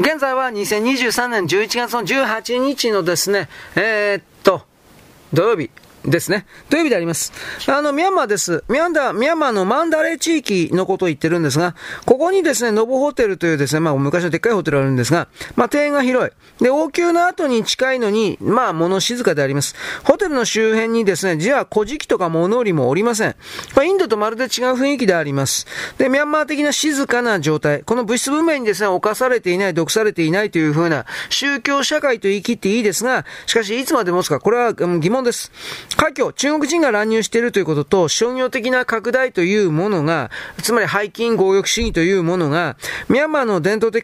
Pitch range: 185-260 Hz